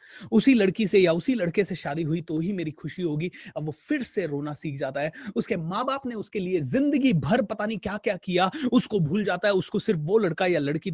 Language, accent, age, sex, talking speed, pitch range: Hindi, native, 30-49, male, 245 wpm, 175-235 Hz